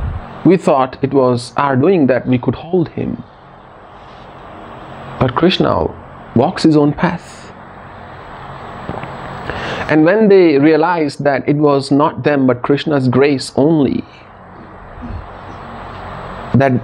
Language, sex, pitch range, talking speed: English, male, 120-160 Hz, 110 wpm